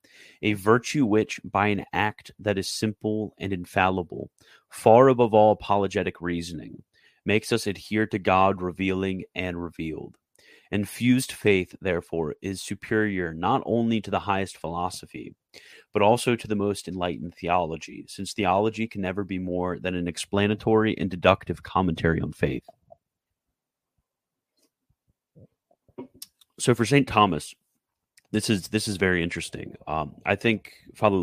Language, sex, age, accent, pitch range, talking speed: English, male, 30-49, American, 85-105 Hz, 135 wpm